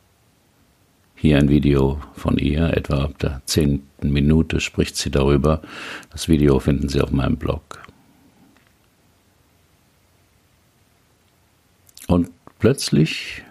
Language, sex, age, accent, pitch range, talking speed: German, male, 50-69, German, 75-95 Hz, 100 wpm